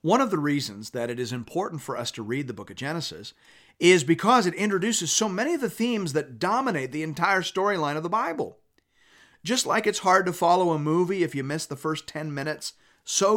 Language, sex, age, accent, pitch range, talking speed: English, male, 40-59, American, 130-190 Hz, 220 wpm